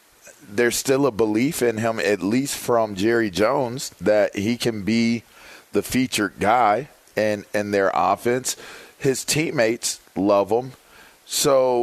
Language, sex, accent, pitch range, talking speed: English, male, American, 100-115 Hz, 135 wpm